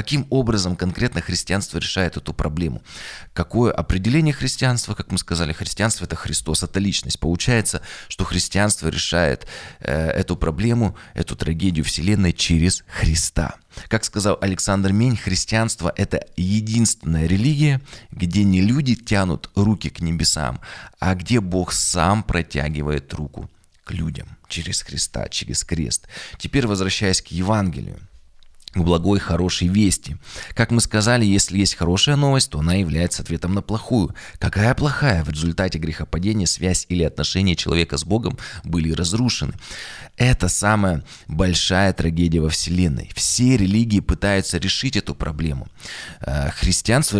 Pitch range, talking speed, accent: 85-105 Hz, 130 wpm, native